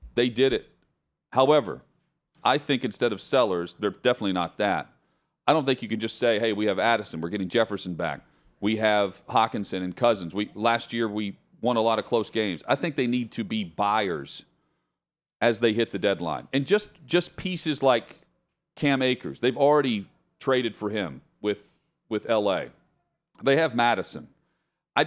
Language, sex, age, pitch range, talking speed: English, male, 40-59, 100-135 Hz, 175 wpm